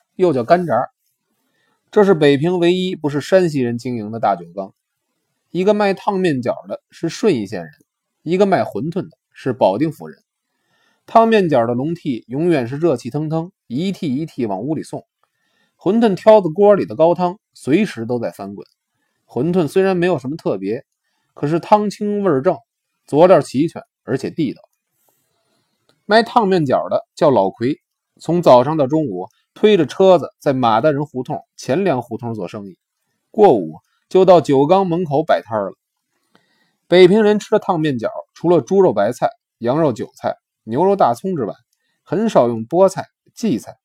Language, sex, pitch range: Chinese, male, 140-200 Hz